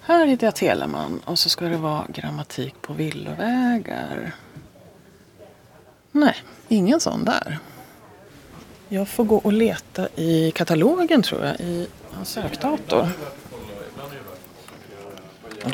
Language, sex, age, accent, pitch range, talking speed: Swedish, female, 30-49, native, 140-220 Hz, 120 wpm